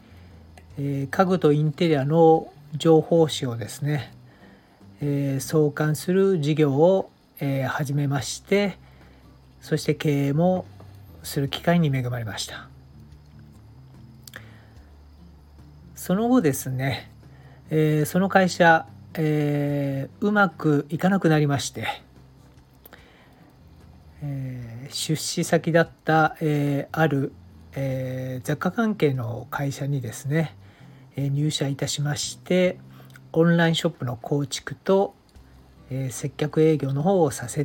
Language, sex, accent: Japanese, male, native